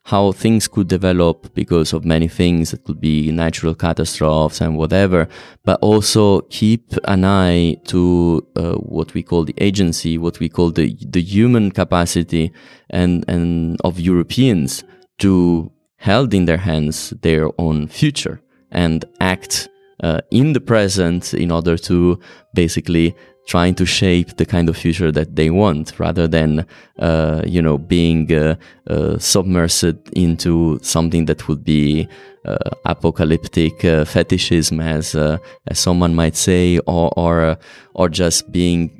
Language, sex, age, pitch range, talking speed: English, male, 20-39, 80-90 Hz, 145 wpm